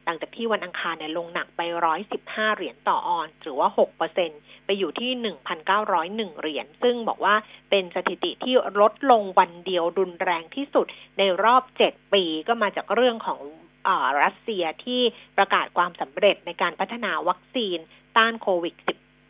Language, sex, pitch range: Thai, female, 180-240 Hz